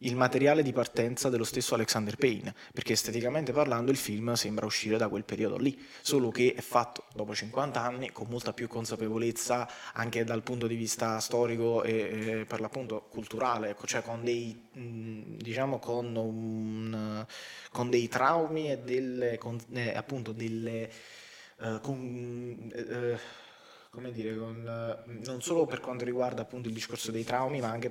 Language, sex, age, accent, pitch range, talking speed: Italian, male, 20-39, native, 110-120 Hz, 140 wpm